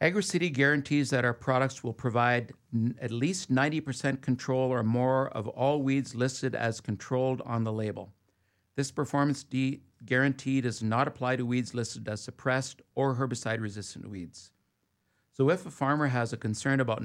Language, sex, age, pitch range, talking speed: English, male, 50-69, 110-135 Hz, 160 wpm